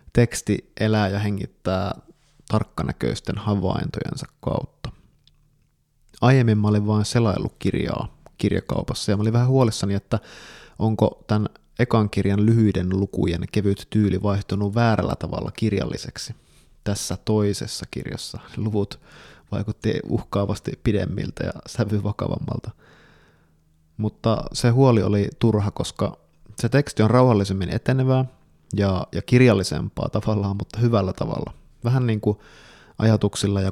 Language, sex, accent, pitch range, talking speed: Finnish, male, native, 100-115 Hz, 115 wpm